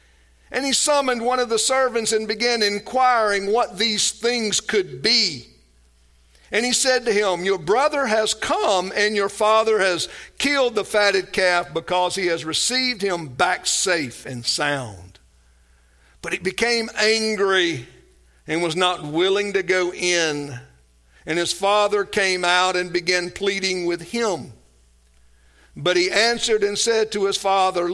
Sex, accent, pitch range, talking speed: male, American, 165-230 Hz, 150 wpm